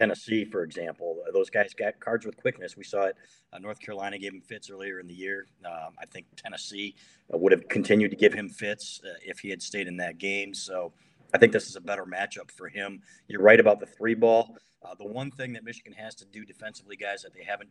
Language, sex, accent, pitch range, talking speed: English, male, American, 100-125 Hz, 240 wpm